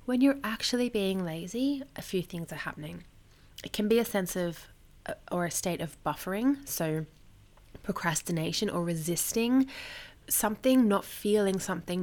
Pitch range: 165-225 Hz